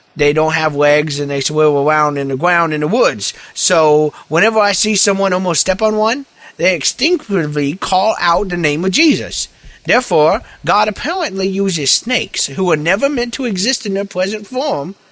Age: 30-49